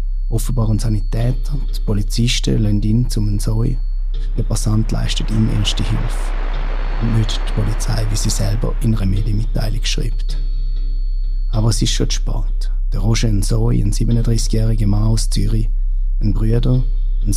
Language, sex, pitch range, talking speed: German, male, 105-115 Hz, 145 wpm